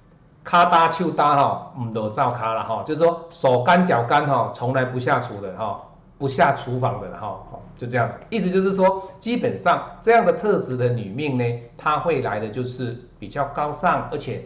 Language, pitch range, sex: Chinese, 115-155 Hz, male